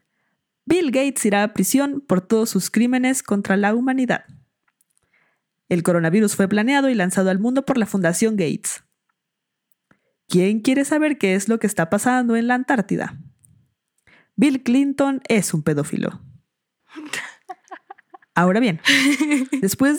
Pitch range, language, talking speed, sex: 180-245 Hz, Spanish, 130 wpm, female